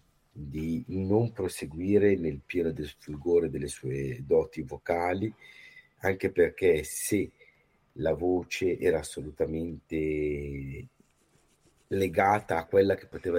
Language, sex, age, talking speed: Italian, male, 50-69, 105 wpm